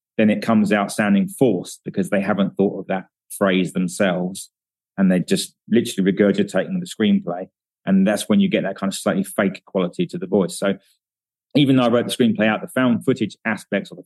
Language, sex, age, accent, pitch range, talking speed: English, male, 30-49, British, 105-140 Hz, 210 wpm